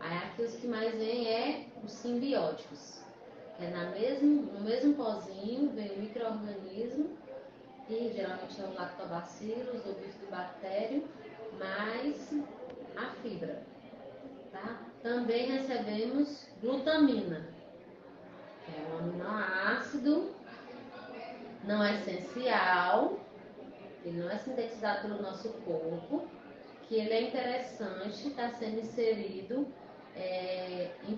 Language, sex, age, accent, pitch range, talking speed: Portuguese, female, 20-39, Brazilian, 200-245 Hz, 110 wpm